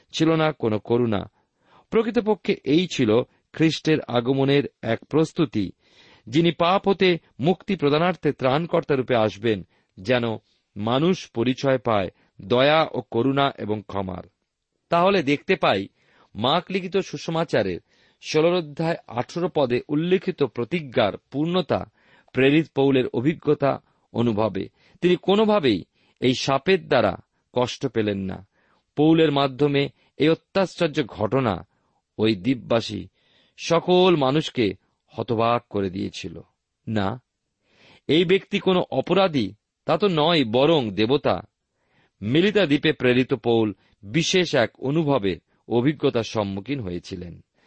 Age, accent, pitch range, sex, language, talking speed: 40-59, native, 110-165 Hz, male, Bengali, 100 wpm